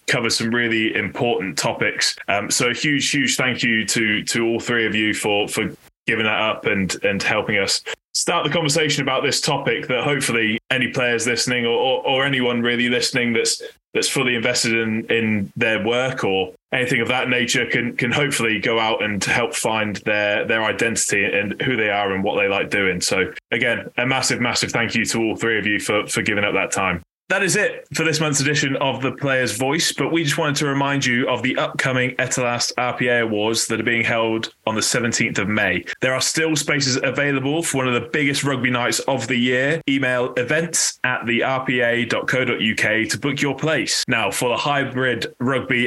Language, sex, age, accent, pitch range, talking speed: English, male, 10-29, British, 115-135 Hz, 205 wpm